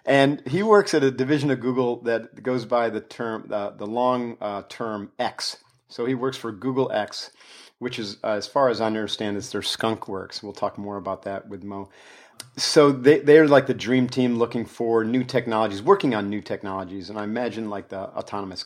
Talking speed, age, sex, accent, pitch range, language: 205 wpm, 40-59, male, American, 105-130 Hz, English